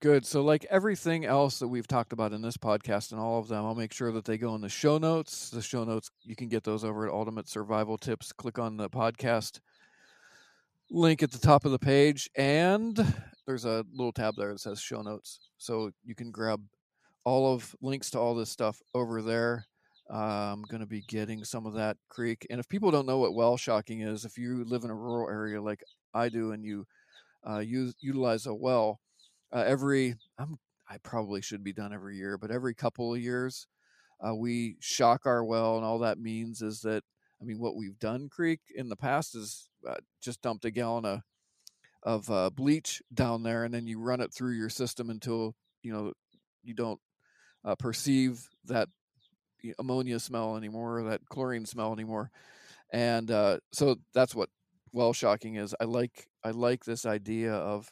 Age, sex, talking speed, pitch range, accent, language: 40-59, male, 200 wpm, 110-125 Hz, American, English